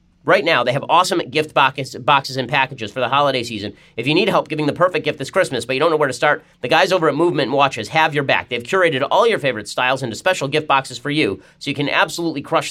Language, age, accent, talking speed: English, 30-49, American, 265 wpm